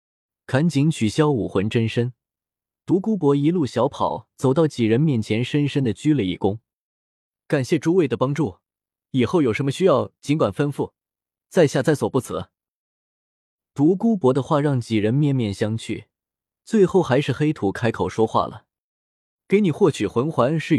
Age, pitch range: 20-39, 105-150 Hz